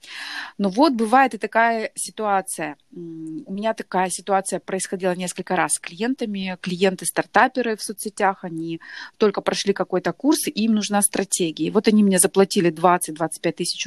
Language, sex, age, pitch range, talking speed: Russian, female, 20-39, 190-235 Hz, 145 wpm